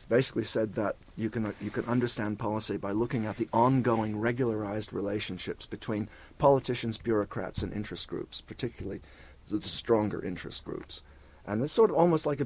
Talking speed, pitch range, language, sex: 165 wpm, 100-120 Hz, English, male